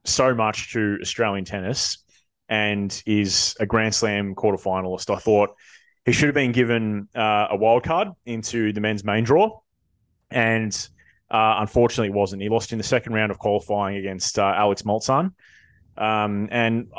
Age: 20-39